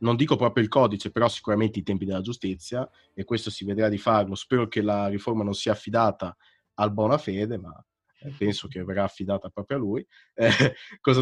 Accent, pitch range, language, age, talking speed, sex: native, 105-135 Hz, Italian, 30-49, 200 wpm, male